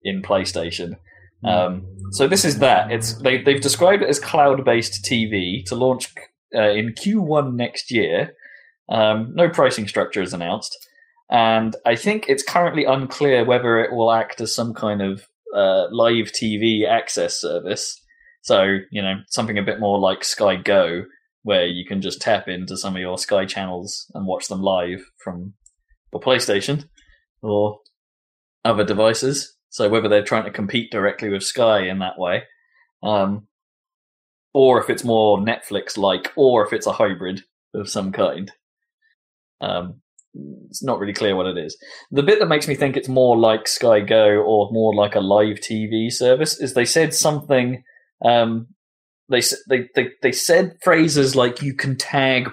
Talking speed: 165 wpm